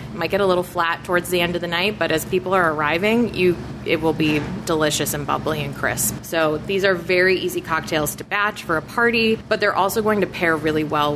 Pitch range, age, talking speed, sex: 155-190 Hz, 20-39, 235 wpm, female